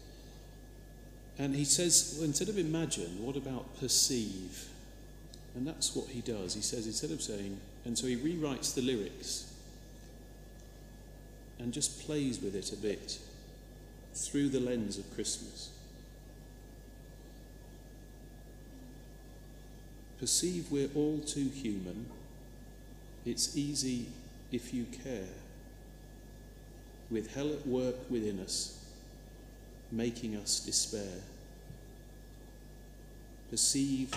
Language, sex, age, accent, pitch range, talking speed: English, male, 40-59, British, 110-135 Hz, 100 wpm